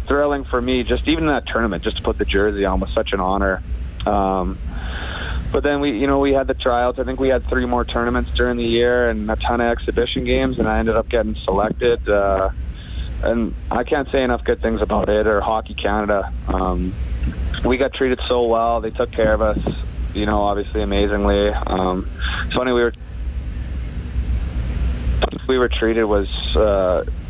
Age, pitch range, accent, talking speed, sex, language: 40-59, 95-120 Hz, American, 190 wpm, male, English